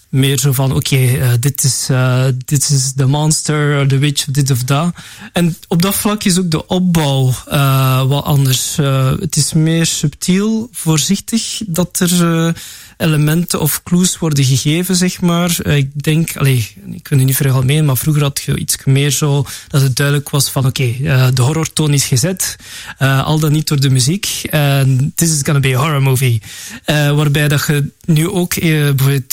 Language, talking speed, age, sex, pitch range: Dutch, 185 wpm, 20-39, male, 135-155 Hz